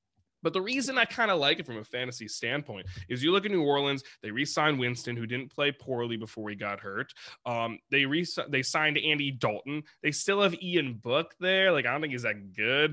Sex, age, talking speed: male, 20-39, 225 wpm